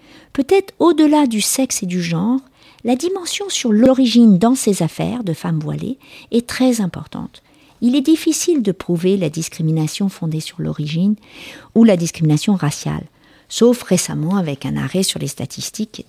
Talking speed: 165 wpm